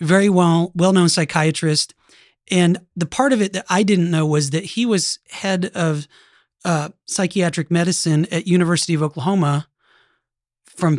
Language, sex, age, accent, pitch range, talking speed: English, male, 30-49, American, 155-190 Hz, 140 wpm